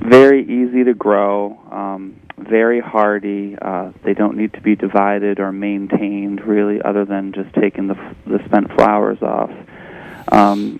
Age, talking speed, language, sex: 30-49, 150 wpm, English, male